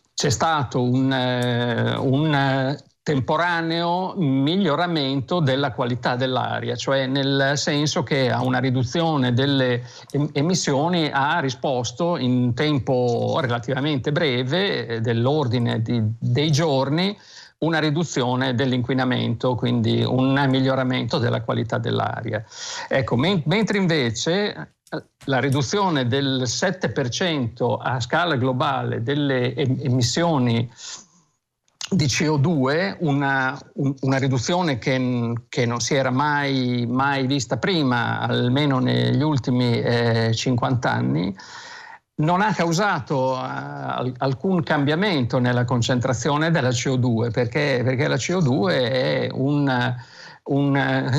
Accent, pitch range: native, 125-155 Hz